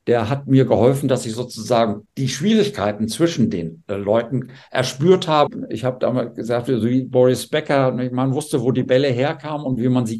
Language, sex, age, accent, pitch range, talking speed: German, male, 60-79, German, 105-130 Hz, 190 wpm